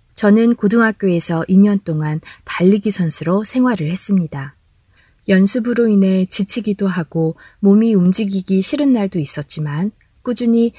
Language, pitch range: Korean, 160-205 Hz